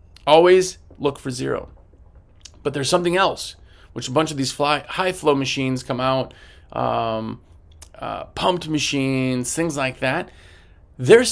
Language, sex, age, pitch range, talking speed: English, male, 30-49, 110-170 Hz, 145 wpm